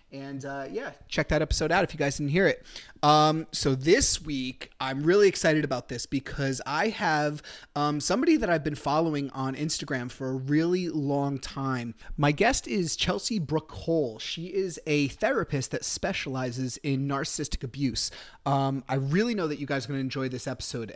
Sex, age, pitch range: male, 30-49, 135-170 Hz